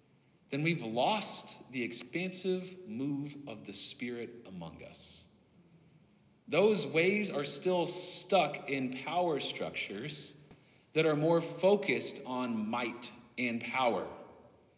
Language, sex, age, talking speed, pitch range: English, male, 40-59, 110 wpm, 105-165 Hz